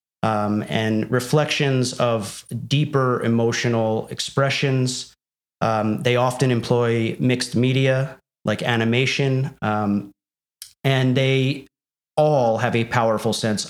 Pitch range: 105-125 Hz